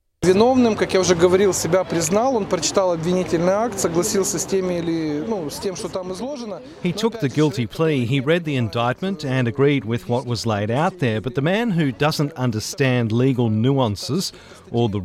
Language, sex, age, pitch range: Italian, male, 40-59, 115-150 Hz